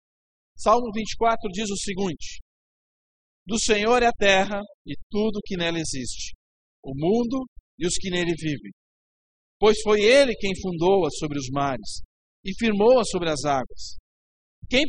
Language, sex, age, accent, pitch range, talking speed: Portuguese, male, 50-69, Brazilian, 140-225 Hz, 145 wpm